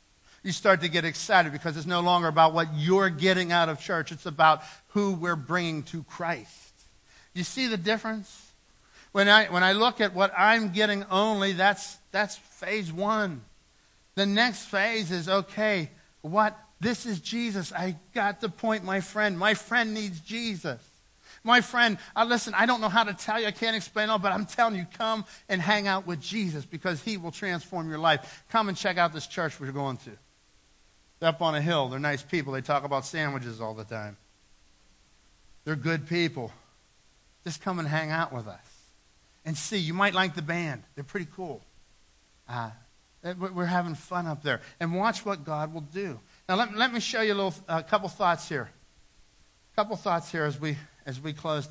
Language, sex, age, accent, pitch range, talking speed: English, male, 50-69, American, 150-205 Hz, 195 wpm